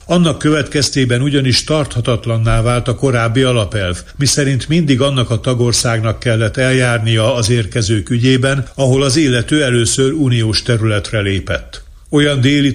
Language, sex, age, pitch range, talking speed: Hungarian, male, 60-79, 115-135 Hz, 130 wpm